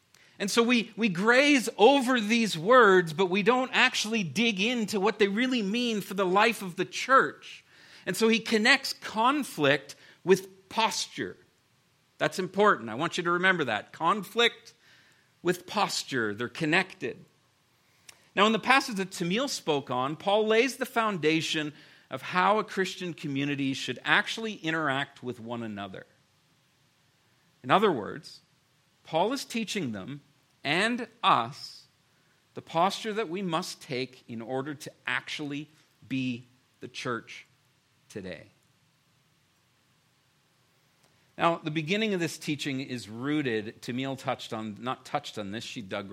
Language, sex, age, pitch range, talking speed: English, male, 50-69, 135-205 Hz, 140 wpm